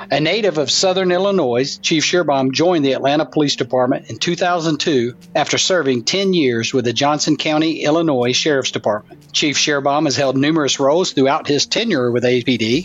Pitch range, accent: 130-170 Hz, American